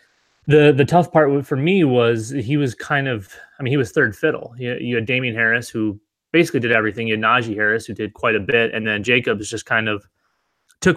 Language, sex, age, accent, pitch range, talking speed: English, male, 20-39, American, 110-125 Hz, 225 wpm